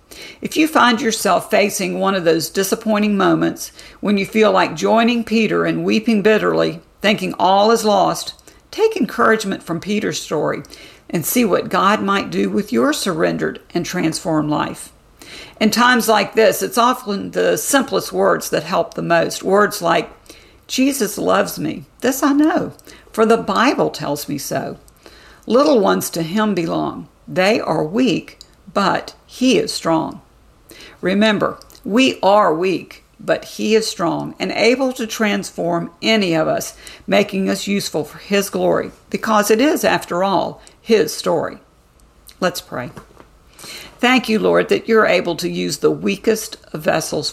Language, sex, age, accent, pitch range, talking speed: English, female, 50-69, American, 180-230 Hz, 150 wpm